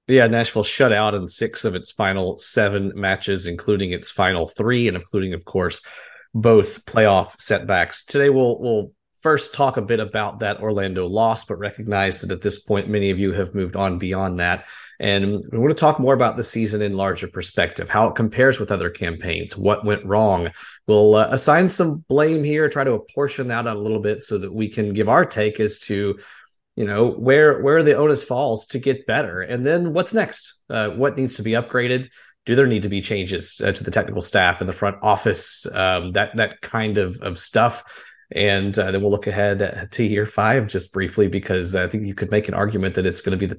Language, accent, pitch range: English, American, 95-115 Hz